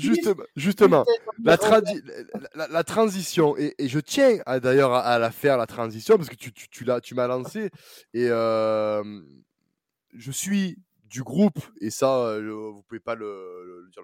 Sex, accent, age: male, French, 20-39